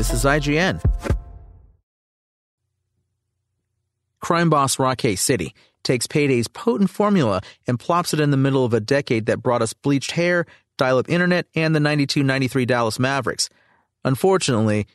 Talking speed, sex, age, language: 140 wpm, male, 40-59, English